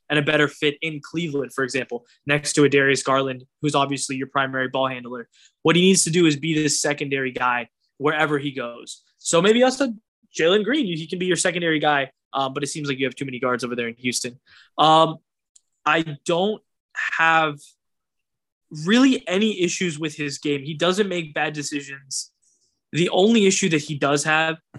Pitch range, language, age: 140-170 Hz, English, 10-29